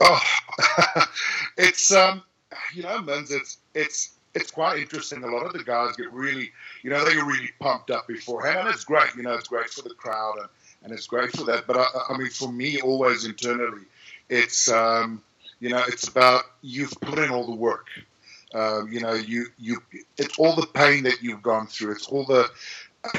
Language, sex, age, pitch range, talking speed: English, male, 50-69, 115-150 Hz, 205 wpm